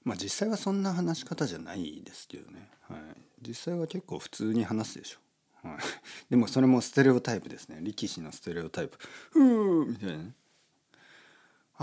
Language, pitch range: Japanese, 120-185 Hz